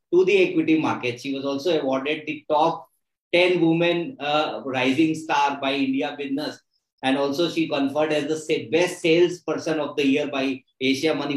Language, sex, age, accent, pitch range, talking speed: English, male, 20-39, Indian, 130-150 Hz, 170 wpm